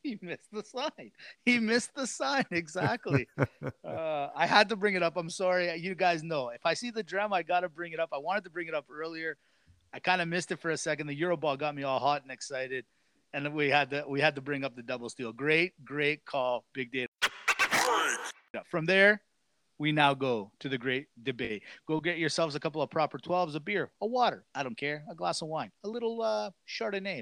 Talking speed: 230 wpm